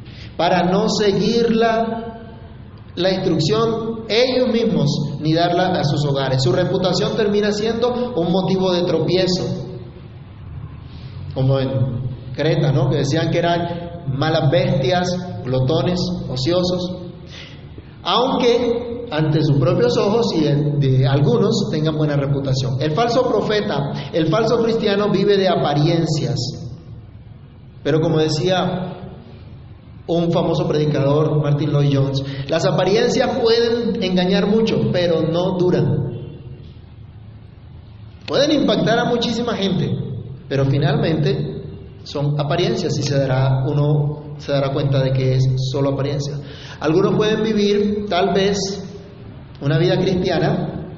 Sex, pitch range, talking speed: male, 135-185 Hz, 120 wpm